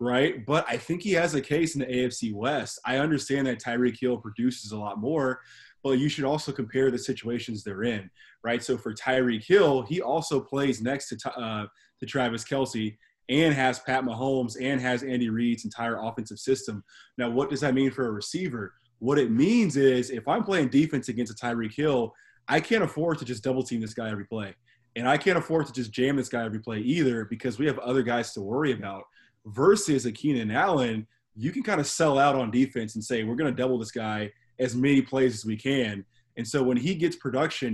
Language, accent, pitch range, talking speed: English, American, 115-140 Hz, 215 wpm